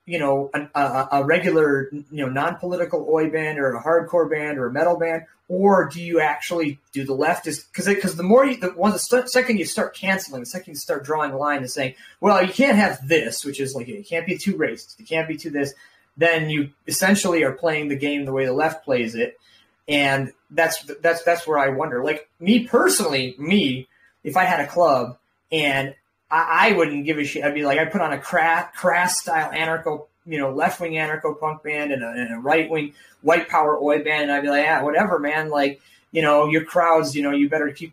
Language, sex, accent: English, male, American